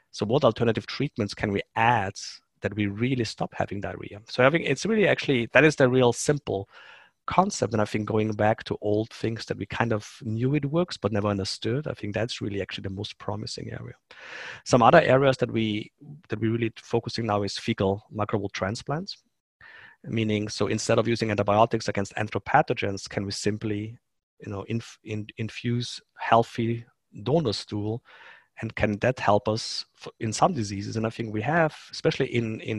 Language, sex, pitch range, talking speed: English, male, 105-125 Hz, 185 wpm